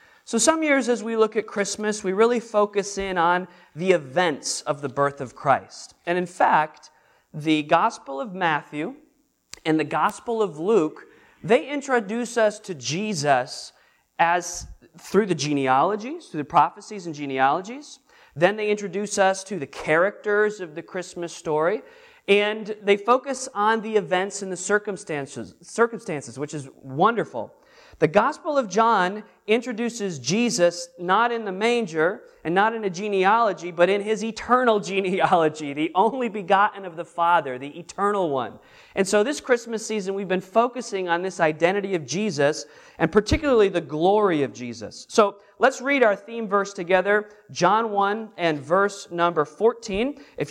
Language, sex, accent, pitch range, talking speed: English, male, American, 170-220 Hz, 155 wpm